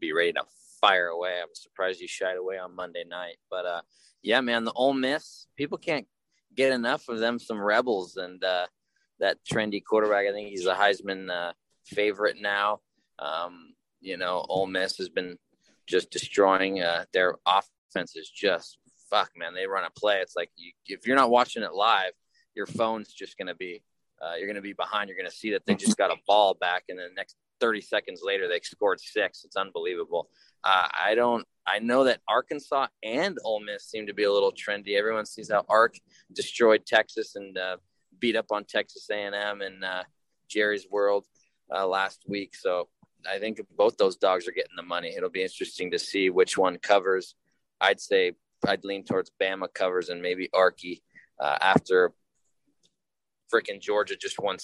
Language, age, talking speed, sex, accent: English, 20-39, 190 wpm, male, American